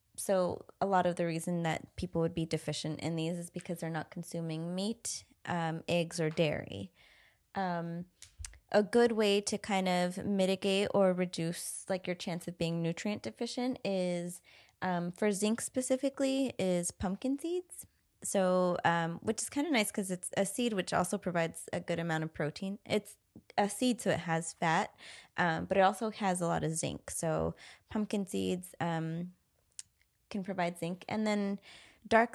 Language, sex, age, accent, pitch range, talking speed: English, female, 20-39, American, 170-205 Hz, 175 wpm